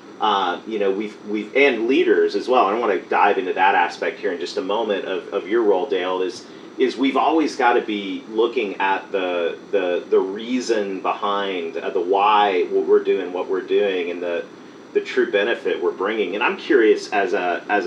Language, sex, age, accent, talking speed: English, male, 40-59, American, 210 wpm